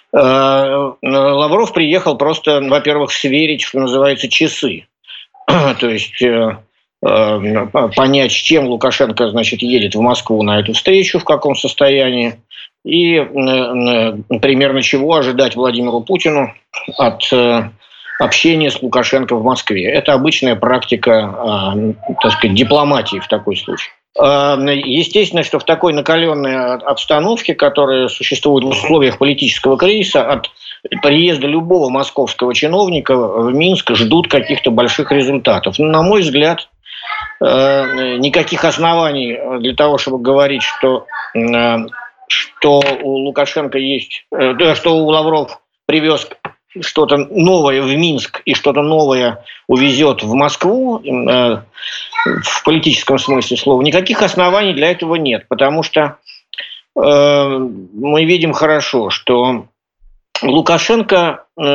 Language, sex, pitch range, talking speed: Polish, male, 125-160 Hz, 110 wpm